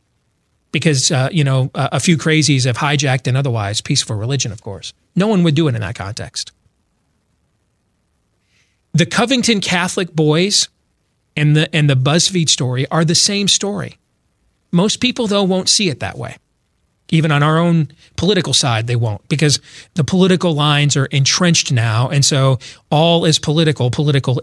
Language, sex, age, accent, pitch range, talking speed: English, male, 40-59, American, 130-170 Hz, 160 wpm